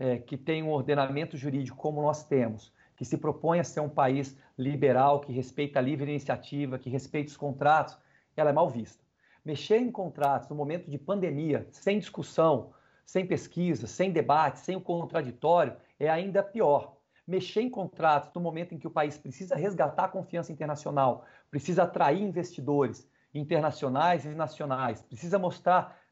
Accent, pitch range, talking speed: Brazilian, 140-175 Hz, 160 wpm